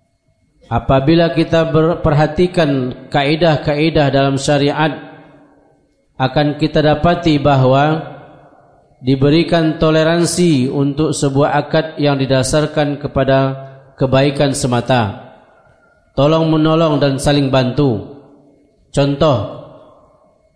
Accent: native